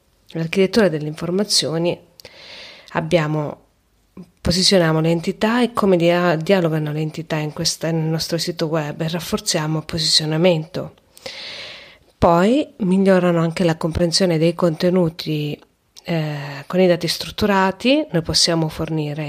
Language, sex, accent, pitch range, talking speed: Italian, female, native, 160-195 Hz, 120 wpm